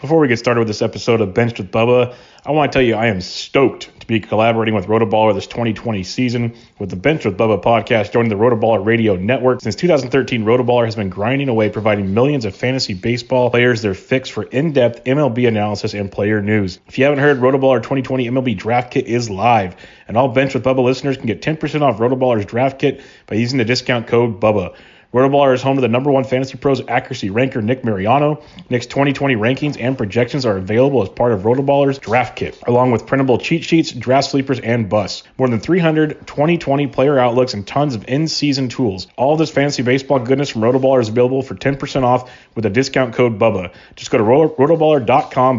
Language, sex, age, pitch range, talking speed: English, male, 30-49, 110-135 Hz, 205 wpm